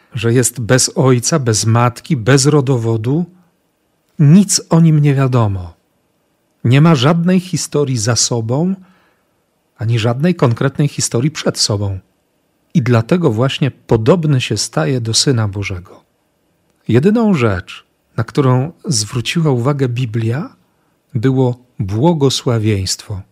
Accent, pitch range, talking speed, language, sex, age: native, 115-155 Hz, 110 wpm, Polish, male, 40-59